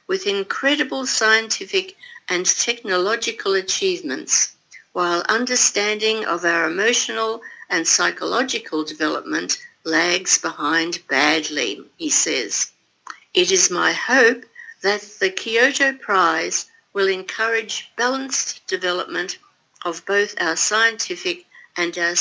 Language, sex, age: Korean, female, 60-79